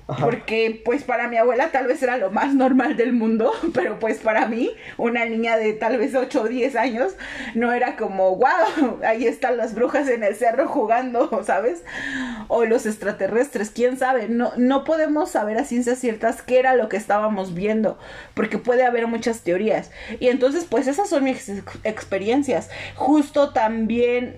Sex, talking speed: female, 175 wpm